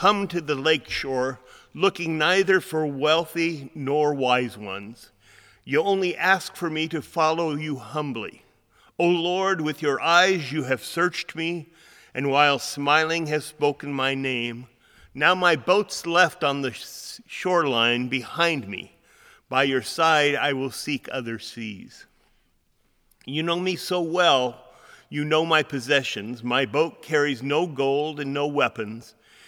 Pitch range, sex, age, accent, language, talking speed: 130-160 Hz, male, 40-59, American, English, 145 wpm